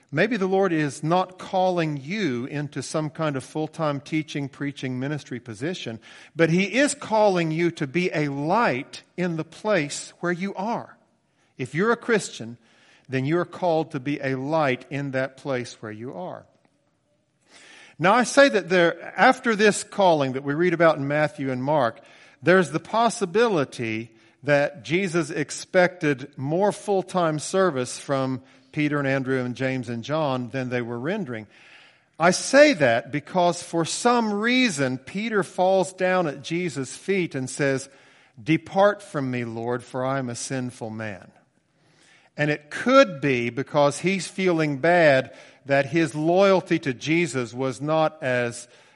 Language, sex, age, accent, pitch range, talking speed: English, male, 50-69, American, 130-180 Hz, 155 wpm